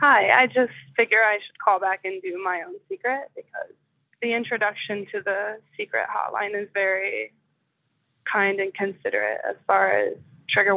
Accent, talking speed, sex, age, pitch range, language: American, 160 wpm, female, 20-39, 185-245 Hz, English